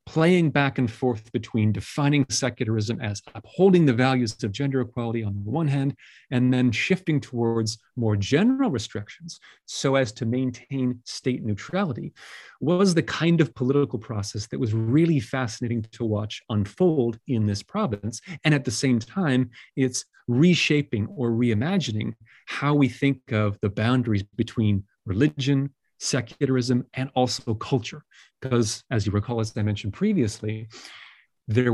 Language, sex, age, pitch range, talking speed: English, male, 30-49, 110-135 Hz, 145 wpm